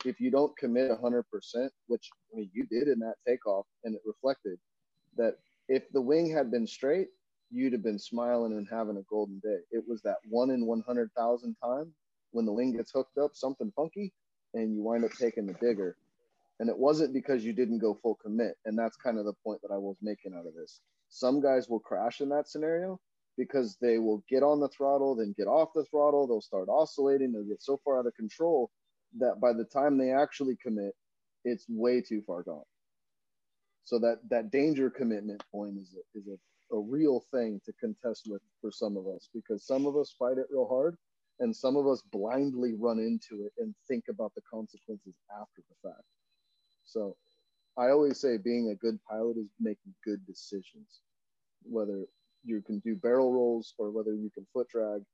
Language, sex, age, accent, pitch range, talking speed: English, male, 30-49, American, 110-140 Hz, 200 wpm